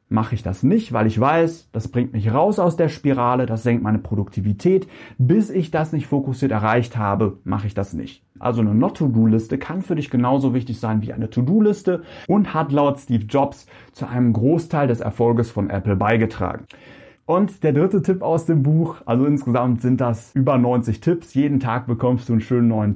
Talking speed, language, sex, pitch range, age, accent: 195 wpm, German, male, 115-150 Hz, 30-49, German